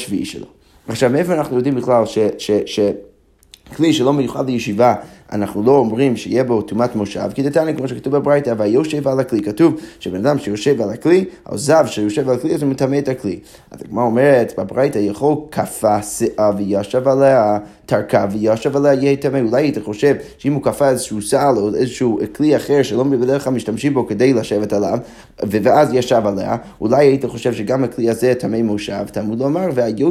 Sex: male